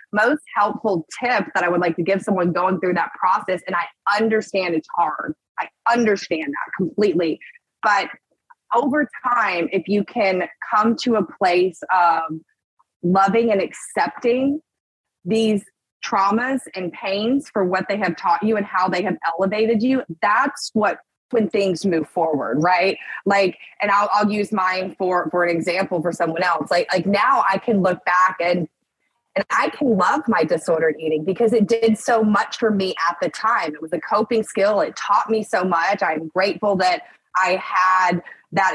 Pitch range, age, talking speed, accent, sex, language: 180-220 Hz, 20-39, 175 wpm, American, female, English